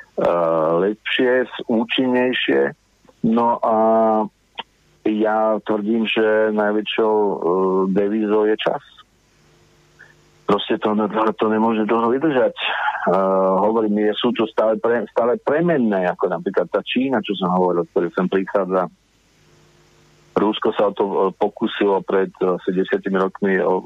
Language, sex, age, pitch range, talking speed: Slovak, male, 50-69, 95-115 Hz, 125 wpm